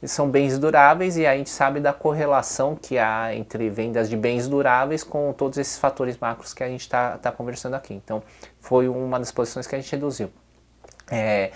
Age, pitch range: 20-39, 110-135 Hz